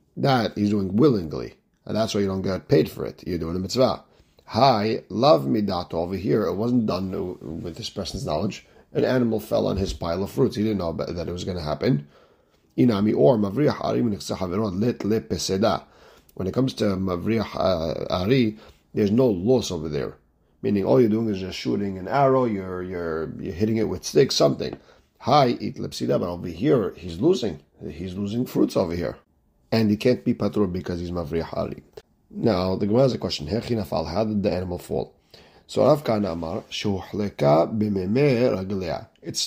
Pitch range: 90-110 Hz